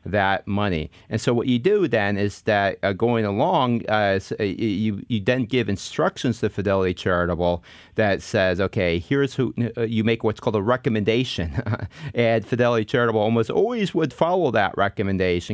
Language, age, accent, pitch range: English, 30-49, American, 90-115 Hz